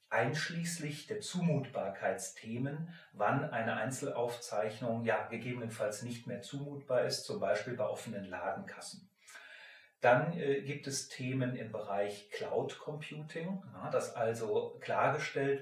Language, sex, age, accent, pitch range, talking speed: English, male, 40-59, German, 115-155 Hz, 110 wpm